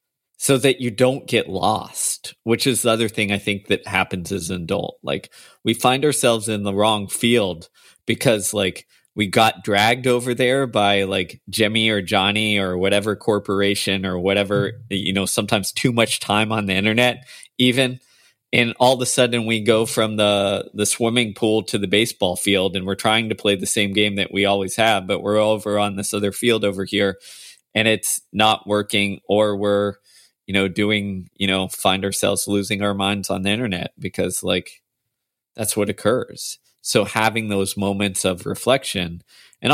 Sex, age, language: male, 20-39, English